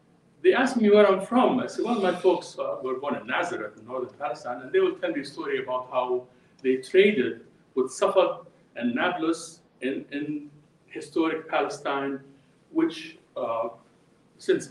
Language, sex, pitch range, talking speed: English, male, 140-210 Hz, 165 wpm